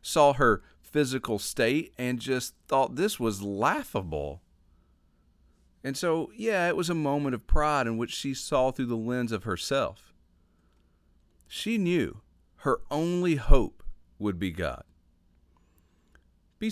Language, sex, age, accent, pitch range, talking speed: English, male, 40-59, American, 80-130 Hz, 135 wpm